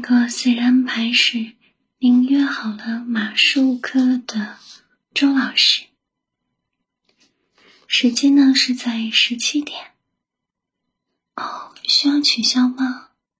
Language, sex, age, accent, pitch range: Chinese, female, 20-39, native, 235-270 Hz